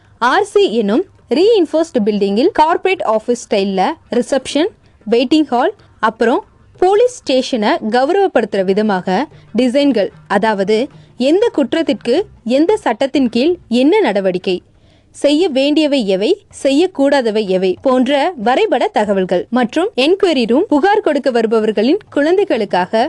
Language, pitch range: Tamil, 220-325 Hz